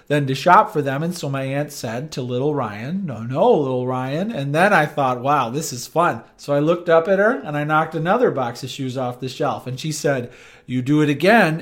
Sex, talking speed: male, 250 wpm